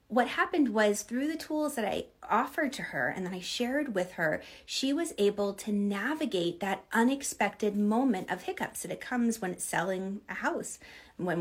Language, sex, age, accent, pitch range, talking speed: English, female, 30-49, American, 190-245 Hz, 190 wpm